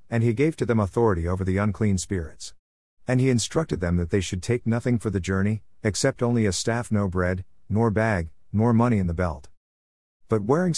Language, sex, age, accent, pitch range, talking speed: English, male, 50-69, American, 90-120 Hz, 205 wpm